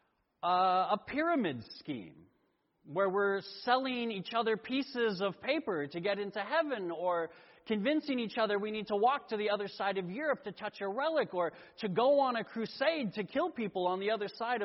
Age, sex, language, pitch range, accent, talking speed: 40-59, male, English, 185-265 Hz, American, 195 wpm